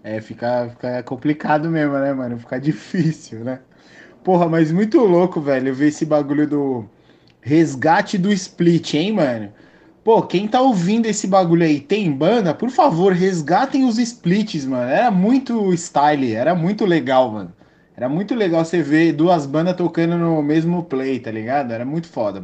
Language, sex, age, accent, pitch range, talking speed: Portuguese, male, 20-39, Brazilian, 135-180 Hz, 165 wpm